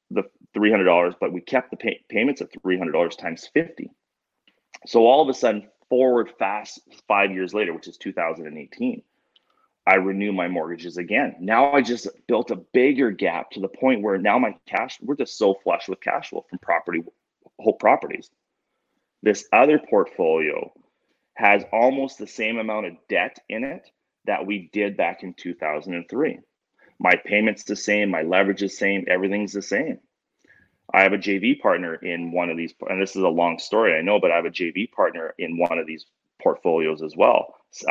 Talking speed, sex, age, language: 180 wpm, male, 30-49, English